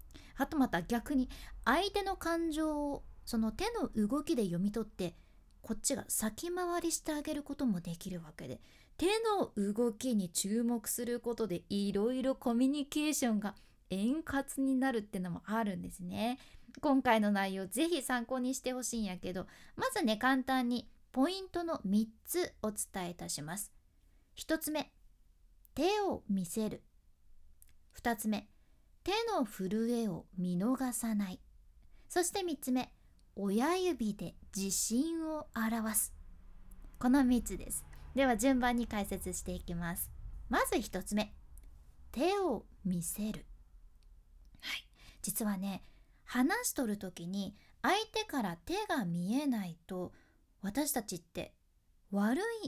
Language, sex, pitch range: Japanese, female, 190-285 Hz